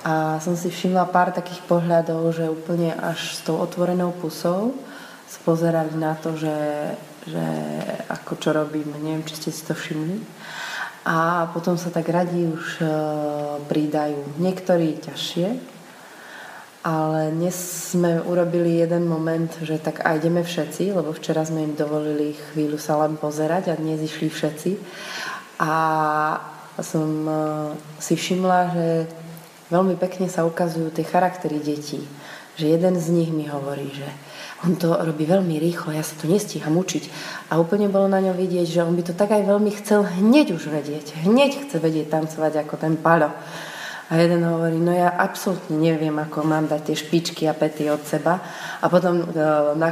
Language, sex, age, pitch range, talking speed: Slovak, female, 20-39, 155-175 Hz, 160 wpm